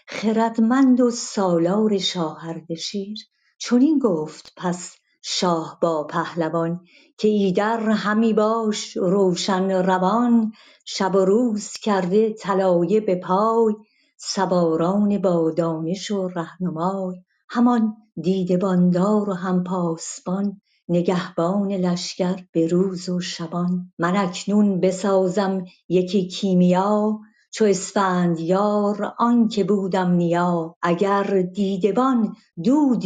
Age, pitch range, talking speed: 50-69, 180-215 Hz, 100 wpm